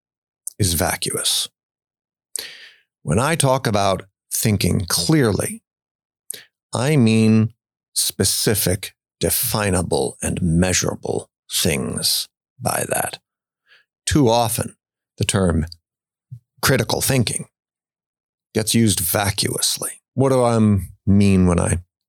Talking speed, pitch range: 85 wpm, 100-125 Hz